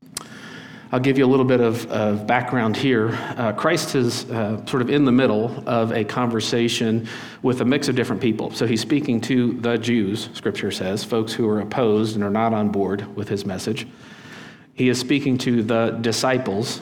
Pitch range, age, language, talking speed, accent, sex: 110-130 Hz, 50-69, English, 195 wpm, American, male